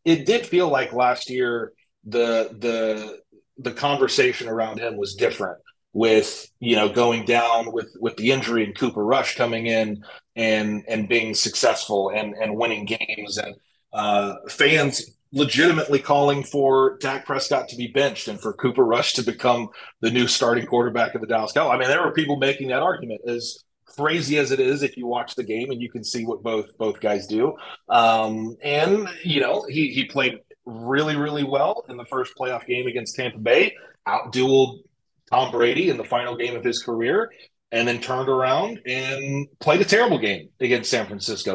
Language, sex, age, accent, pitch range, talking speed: English, male, 30-49, American, 115-145 Hz, 185 wpm